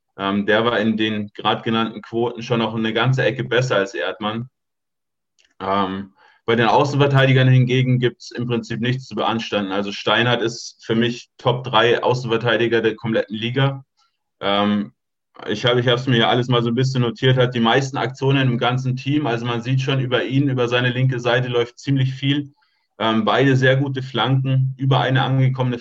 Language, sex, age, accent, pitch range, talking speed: German, male, 20-39, German, 115-130 Hz, 185 wpm